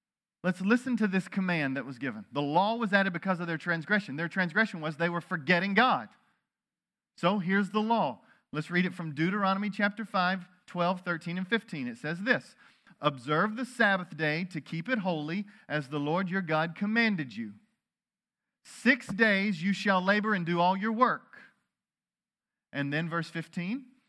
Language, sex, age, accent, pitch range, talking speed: English, male, 40-59, American, 165-215 Hz, 175 wpm